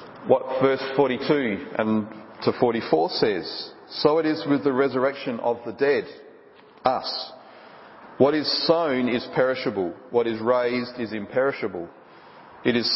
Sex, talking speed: male, 135 wpm